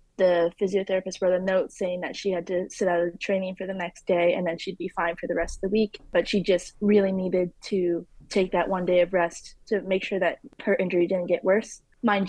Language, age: English, 20-39